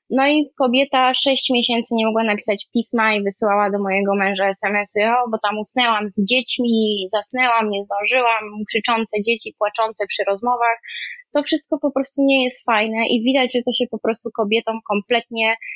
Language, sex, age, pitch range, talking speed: Polish, female, 20-39, 220-260 Hz, 170 wpm